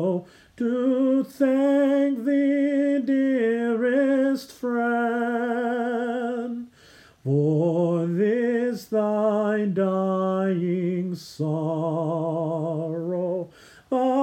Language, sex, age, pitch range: English, male, 30-49, 180-270 Hz